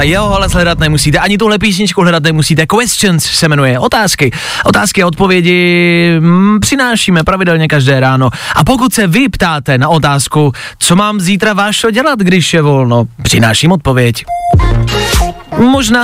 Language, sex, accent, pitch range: Czech, male, native, 145-195 Hz